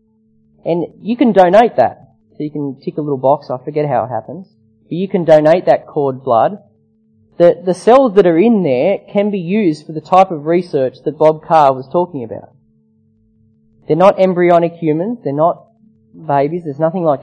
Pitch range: 115-180 Hz